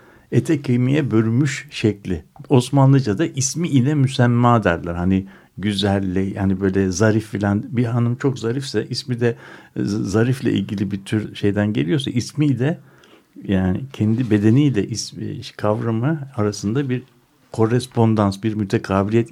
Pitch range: 100-130 Hz